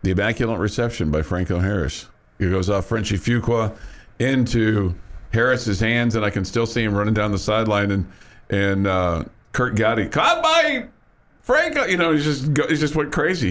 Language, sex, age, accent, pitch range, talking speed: English, male, 50-69, American, 105-135 Hz, 180 wpm